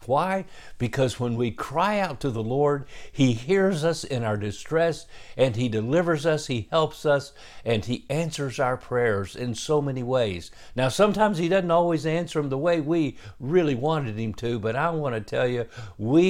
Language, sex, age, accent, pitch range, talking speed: English, male, 60-79, American, 115-145 Hz, 190 wpm